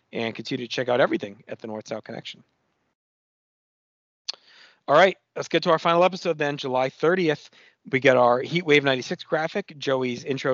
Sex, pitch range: male, 135-175 Hz